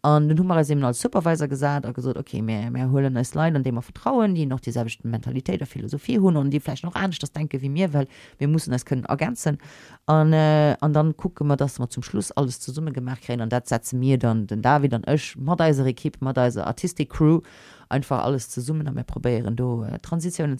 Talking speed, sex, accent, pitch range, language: 235 wpm, female, German, 130-160 Hz, English